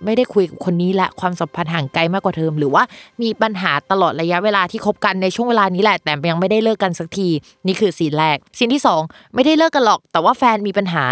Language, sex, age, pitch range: Thai, female, 20-39, 170-220 Hz